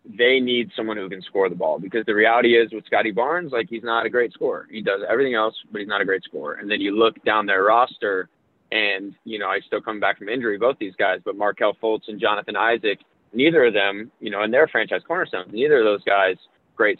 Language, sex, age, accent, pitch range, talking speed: English, male, 20-39, American, 100-120 Hz, 245 wpm